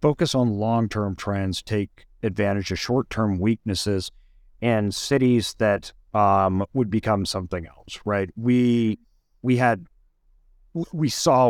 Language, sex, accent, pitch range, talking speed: English, male, American, 100-130 Hz, 120 wpm